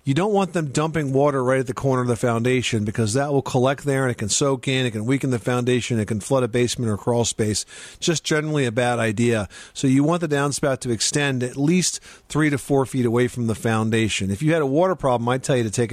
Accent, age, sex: American, 40-59, male